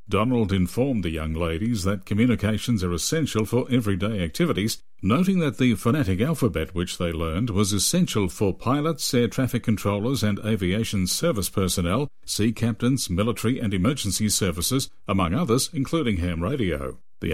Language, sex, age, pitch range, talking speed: English, male, 50-69, 95-125 Hz, 150 wpm